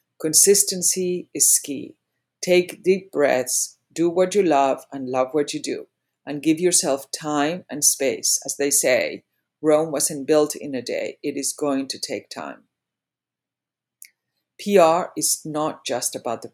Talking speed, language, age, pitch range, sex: 150 wpm, English, 50-69, 135-165 Hz, female